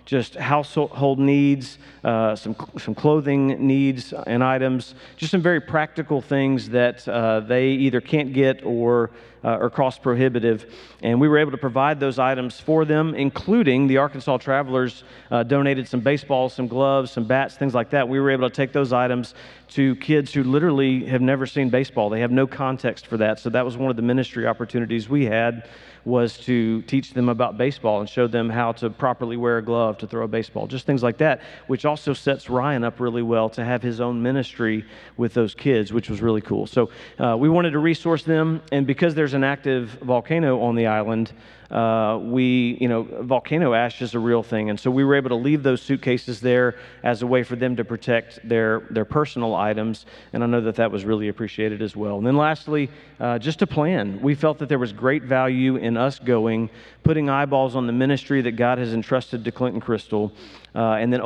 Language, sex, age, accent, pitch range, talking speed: English, male, 40-59, American, 115-140 Hz, 210 wpm